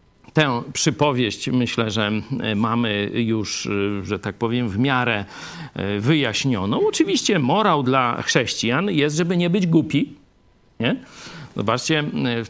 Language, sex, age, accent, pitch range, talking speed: Polish, male, 50-69, native, 110-155 Hz, 110 wpm